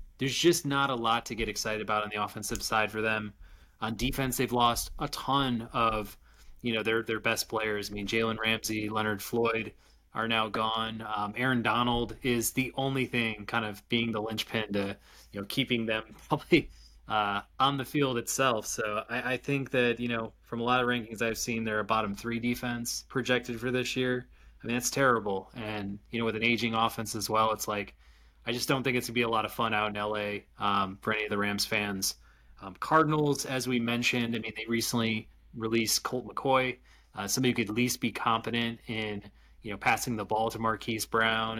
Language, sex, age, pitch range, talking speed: English, male, 20-39, 105-120 Hz, 215 wpm